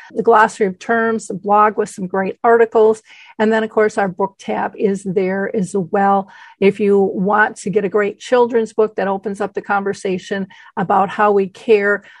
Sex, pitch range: female, 195-225 Hz